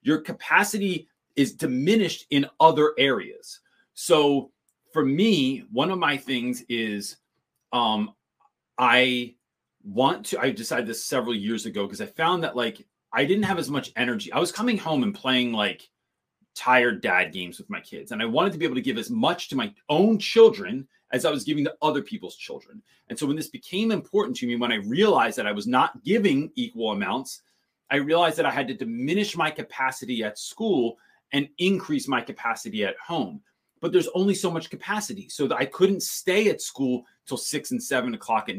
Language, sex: English, male